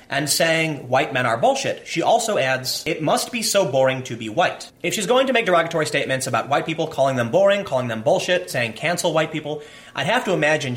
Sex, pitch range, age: male, 130-185 Hz, 30-49